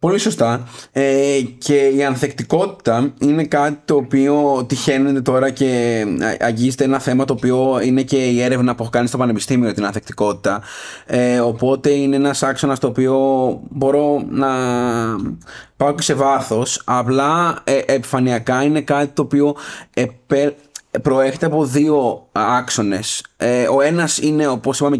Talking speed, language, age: 140 wpm, Greek, 20-39